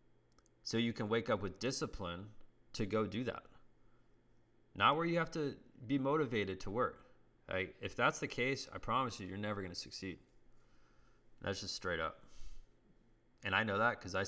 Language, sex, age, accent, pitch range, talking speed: English, male, 20-39, American, 100-120 Hz, 175 wpm